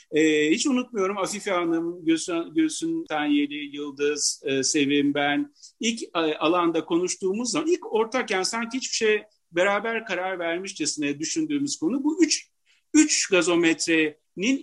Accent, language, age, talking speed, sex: native, Turkish, 50-69, 115 wpm, male